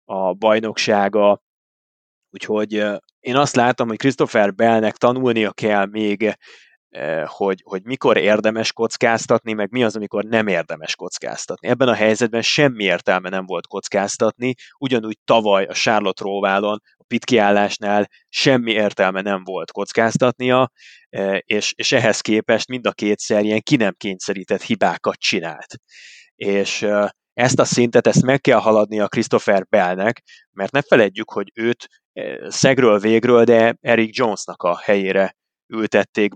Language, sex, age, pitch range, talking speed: Hungarian, male, 20-39, 100-120 Hz, 135 wpm